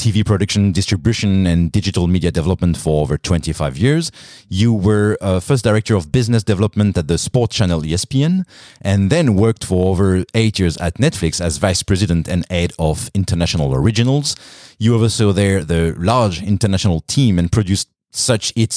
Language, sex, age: English, male, 30-49